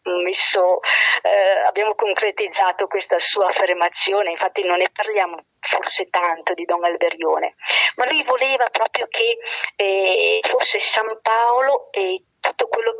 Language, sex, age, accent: Italian, female, 50-69, native